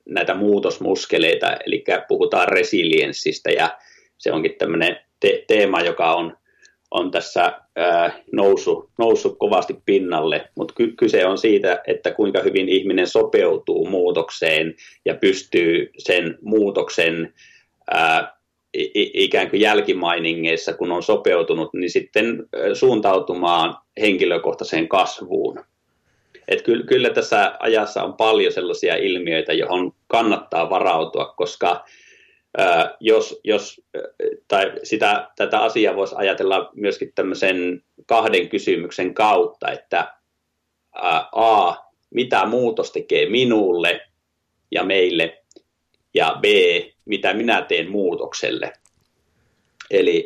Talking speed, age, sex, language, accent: 105 wpm, 30-49, male, Finnish, native